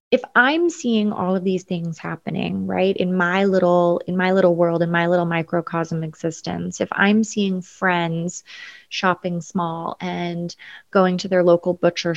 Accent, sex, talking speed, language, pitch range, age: American, female, 165 wpm, English, 170-195 Hz, 20-39